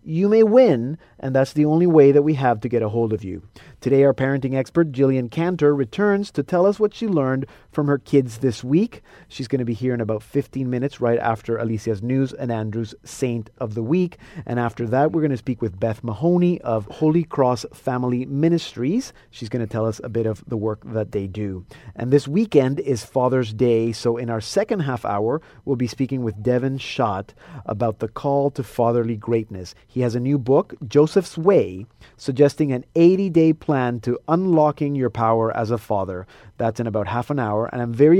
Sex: male